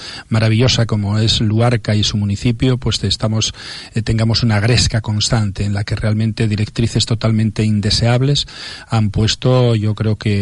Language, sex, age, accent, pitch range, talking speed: Spanish, male, 40-59, Spanish, 105-115 Hz, 145 wpm